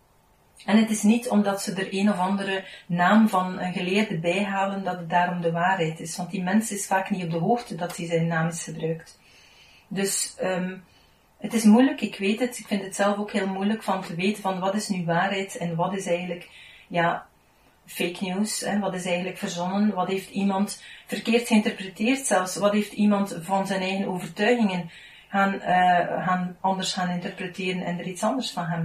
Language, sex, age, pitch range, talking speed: Dutch, female, 40-59, 180-210 Hz, 200 wpm